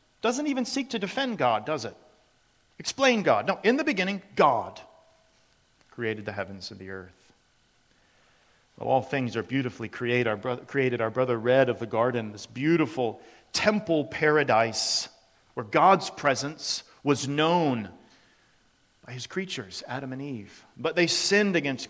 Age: 40-59